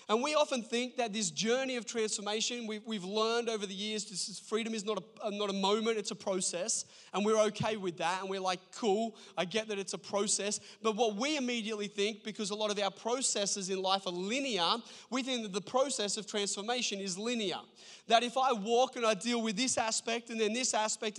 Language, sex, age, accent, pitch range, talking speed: English, male, 20-39, Australian, 200-240 Hz, 220 wpm